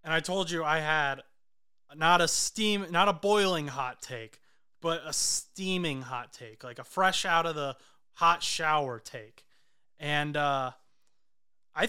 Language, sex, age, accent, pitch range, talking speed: English, male, 20-39, American, 145-185 Hz, 155 wpm